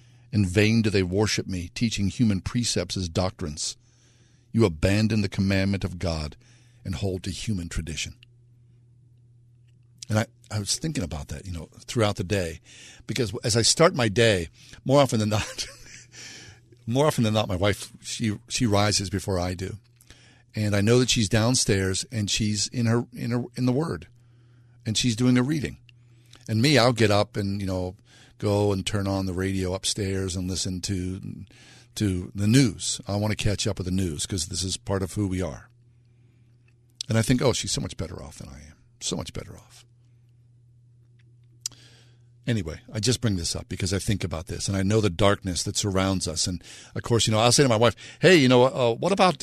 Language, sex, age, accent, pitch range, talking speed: English, male, 50-69, American, 95-120 Hz, 200 wpm